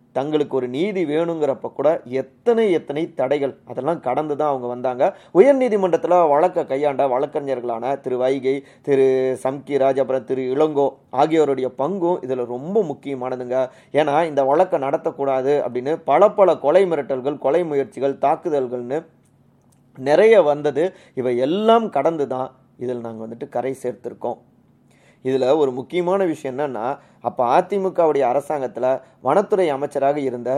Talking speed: 120 wpm